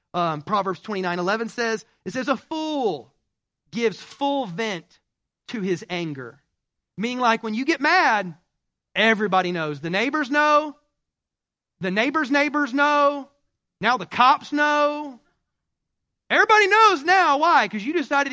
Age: 30-49